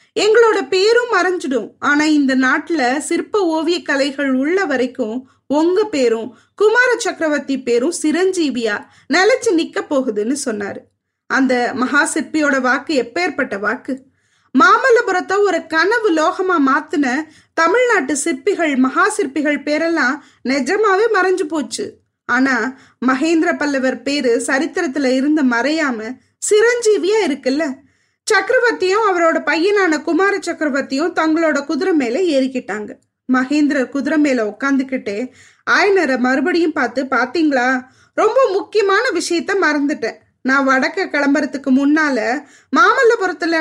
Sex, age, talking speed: female, 20-39, 105 wpm